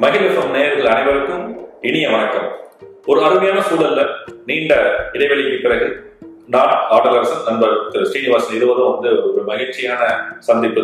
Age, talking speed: 40-59, 115 wpm